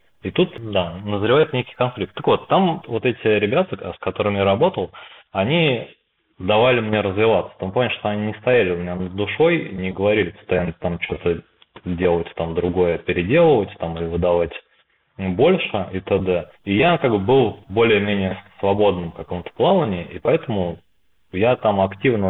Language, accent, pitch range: Russian, native, 95-115 Hz